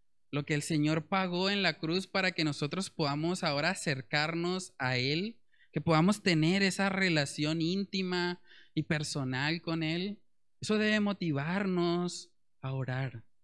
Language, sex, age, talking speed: Spanish, male, 20-39, 140 wpm